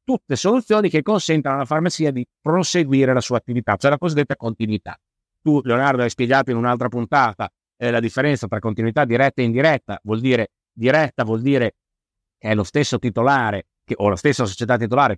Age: 50-69